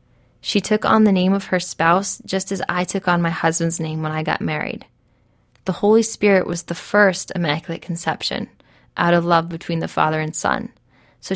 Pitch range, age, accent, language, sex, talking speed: 155-185 Hz, 10-29, American, English, female, 195 wpm